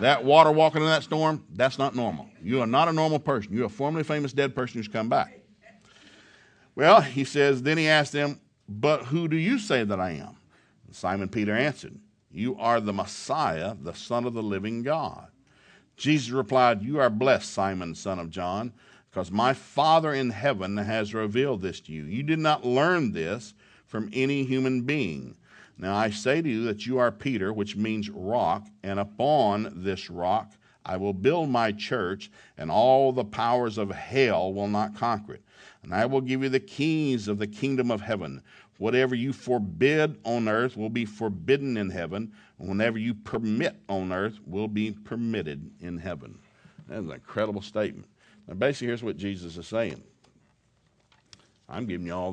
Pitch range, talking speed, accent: 105-135 Hz, 180 wpm, American